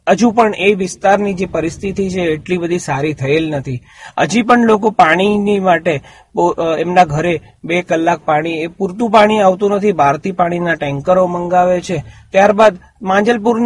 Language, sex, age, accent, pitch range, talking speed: Gujarati, male, 40-59, native, 165-210 Hz, 85 wpm